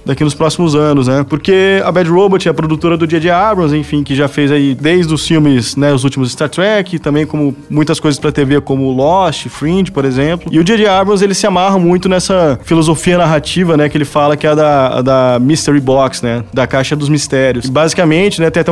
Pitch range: 145-180 Hz